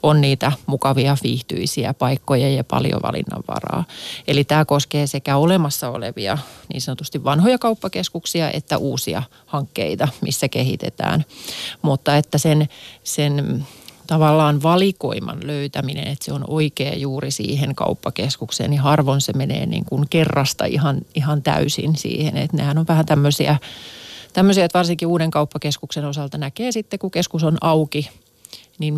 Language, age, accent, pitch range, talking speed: Finnish, 30-49, native, 140-165 Hz, 135 wpm